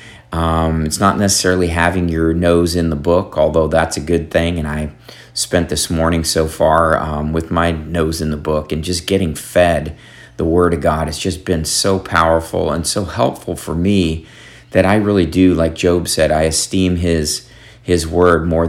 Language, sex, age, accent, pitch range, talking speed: English, male, 40-59, American, 80-95 Hz, 200 wpm